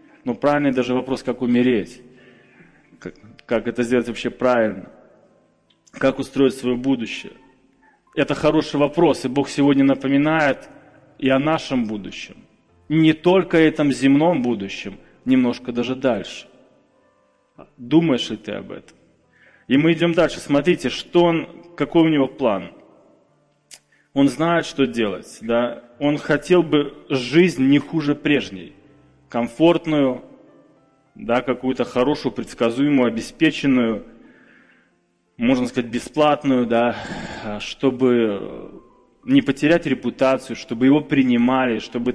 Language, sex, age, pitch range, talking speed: Russian, male, 20-39, 120-155 Hz, 110 wpm